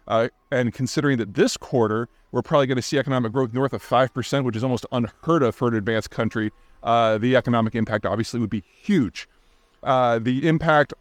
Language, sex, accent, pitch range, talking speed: English, male, American, 115-150 Hz, 195 wpm